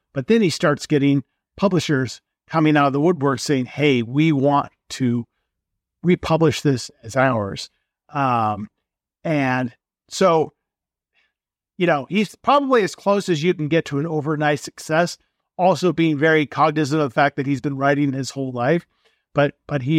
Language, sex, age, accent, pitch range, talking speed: English, male, 50-69, American, 130-155 Hz, 160 wpm